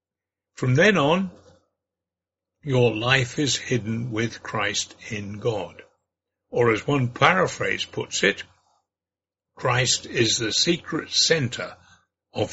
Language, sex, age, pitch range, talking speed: English, male, 60-79, 120-205 Hz, 110 wpm